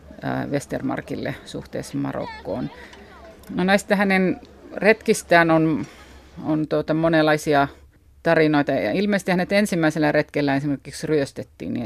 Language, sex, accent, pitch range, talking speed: Finnish, female, native, 135-165 Hz, 100 wpm